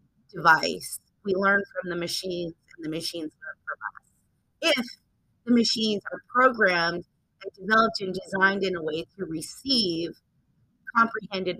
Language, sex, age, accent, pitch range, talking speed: English, female, 30-49, American, 170-205 Hz, 140 wpm